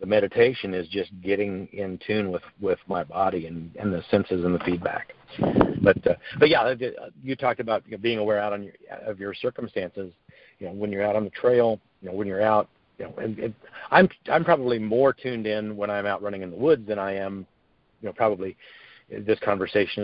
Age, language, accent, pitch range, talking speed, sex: 50-69, English, American, 95-110 Hz, 220 wpm, male